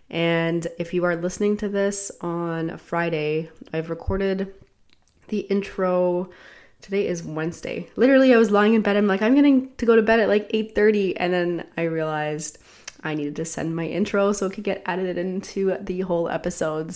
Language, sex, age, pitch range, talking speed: English, female, 20-39, 160-190 Hz, 190 wpm